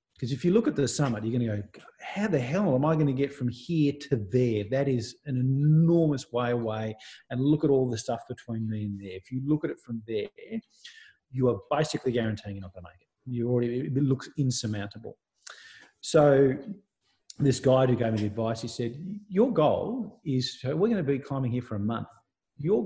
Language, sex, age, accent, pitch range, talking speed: English, male, 40-59, Australian, 110-145 Hz, 220 wpm